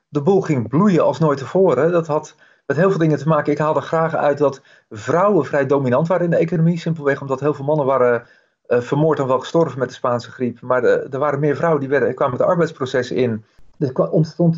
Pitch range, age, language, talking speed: 140-170 Hz, 40-59, Dutch, 230 wpm